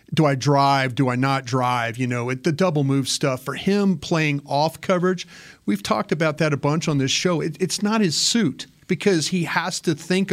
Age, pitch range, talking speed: 40-59, 140-170 Hz, 210 wpm